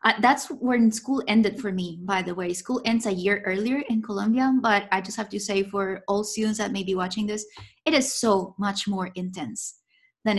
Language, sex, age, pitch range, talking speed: English, female, 20-39, 195-240 Hz, 220 wpm